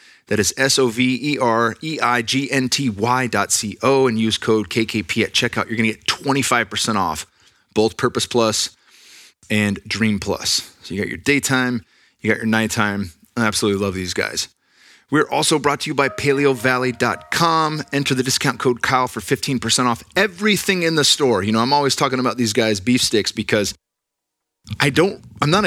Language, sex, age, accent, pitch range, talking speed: English, male, 30-49, American, 110-130 Hz, 190 wpm